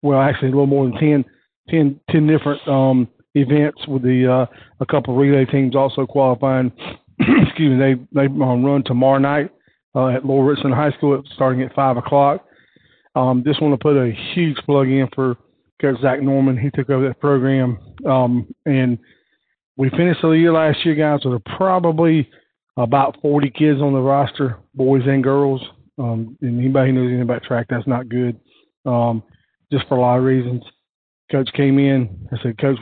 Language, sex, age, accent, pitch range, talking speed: English, male, 40-59, American, 125-145 Hz, 185 wpm